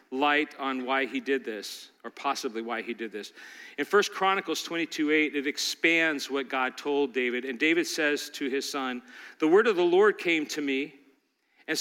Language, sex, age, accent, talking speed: English, male, 40-59, American, 190 wpm